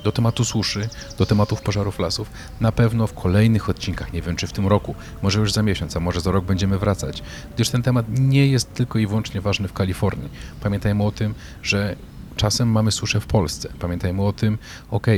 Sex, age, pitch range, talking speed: male, 40-59, 90-105 Hz, 205 wpm